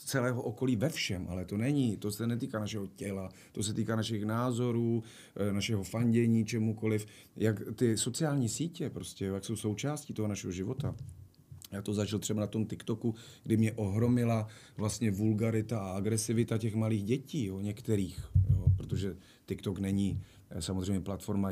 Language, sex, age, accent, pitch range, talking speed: Czech, male, 40-59, native, 100-125 Hz, 150 wpm